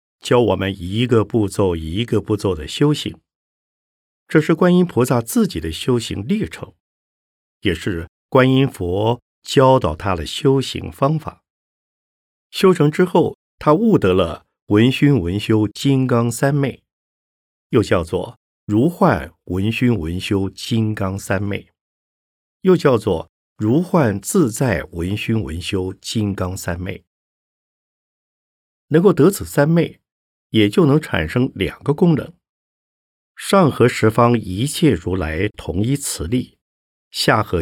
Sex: male